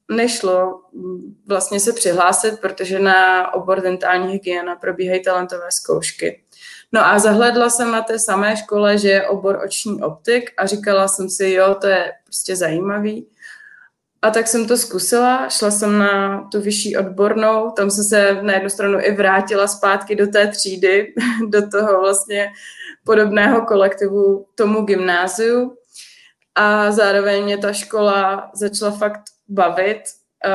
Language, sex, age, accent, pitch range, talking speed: Czech, female, 20-39, native, 190-215 Hz, 140 wpm